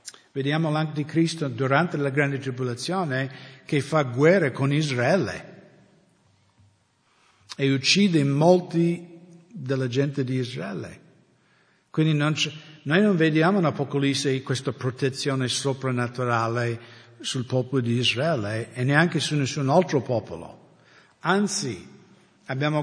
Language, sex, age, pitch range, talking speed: English, male, 60-79, 130-170 Hz, 110 wpm